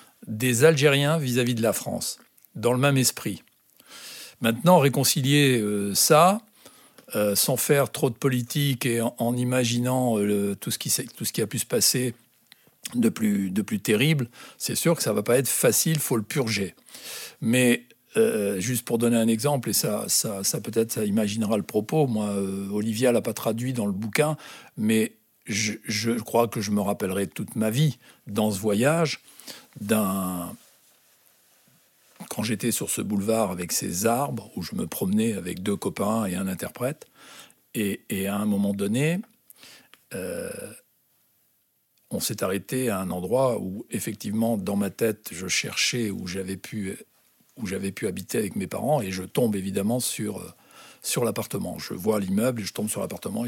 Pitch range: 105-145 Hz